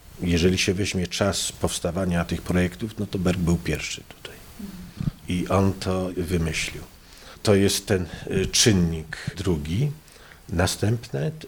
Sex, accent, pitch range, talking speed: male, native, 85-105 Hz, 120 wpm